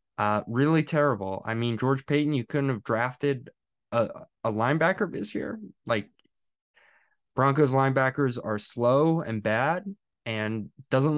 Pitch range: 110-135 Hz